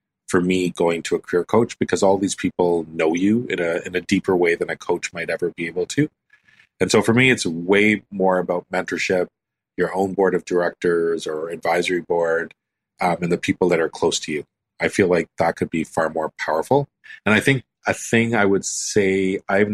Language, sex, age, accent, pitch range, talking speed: English, male, 30-49, American, 90-105 Hz, 215 wpm